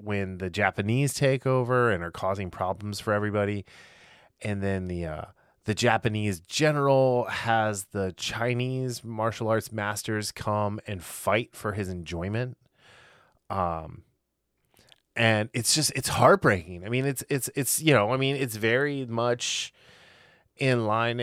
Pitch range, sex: 95-130 Hz, male